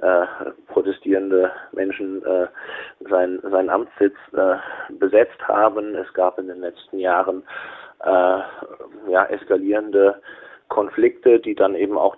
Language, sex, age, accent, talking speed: German, male, 20-39, German, 105 wpm